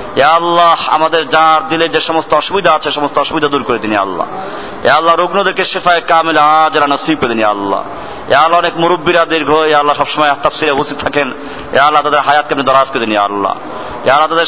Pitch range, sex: 125-165 Hz, male